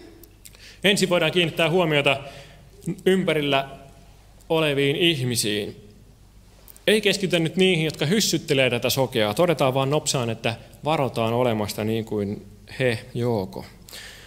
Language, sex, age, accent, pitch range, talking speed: Finnish, male, 30-49, native, 110-160 Hz, 105 wpm